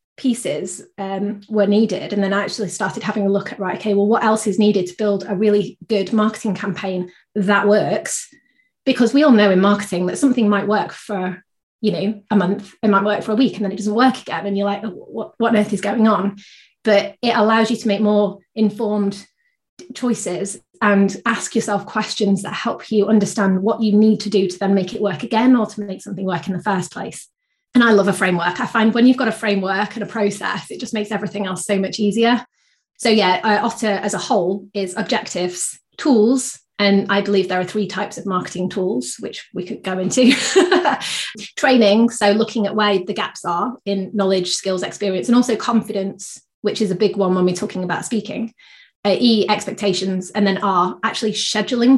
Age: 30-49